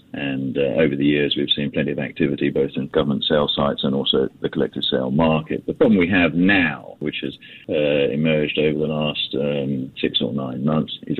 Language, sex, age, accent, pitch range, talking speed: English, male, 50-69, British, 75-85 Hz, 210 wpm